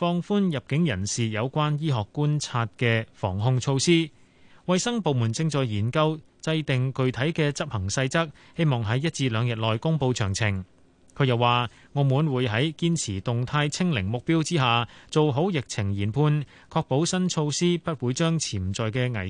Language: Chinese